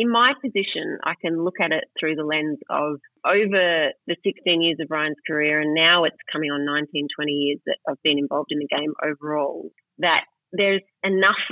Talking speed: 200 wpm